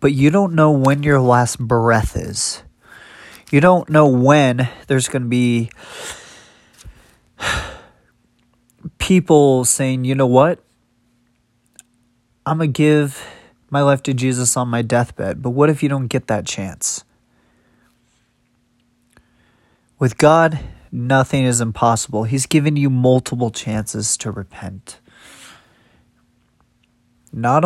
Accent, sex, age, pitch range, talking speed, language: American, male, 30-49, 115-140 Hz, 115 wpm, English